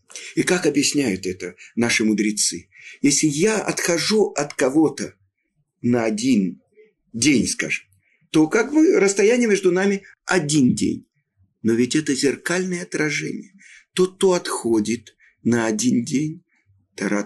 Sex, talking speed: male, 125 wpm